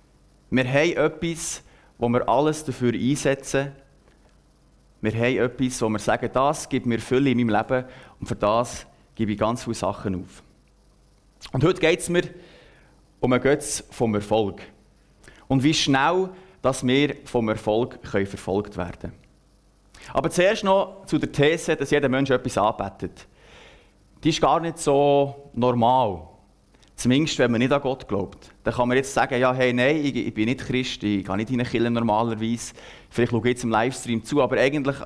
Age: 30-49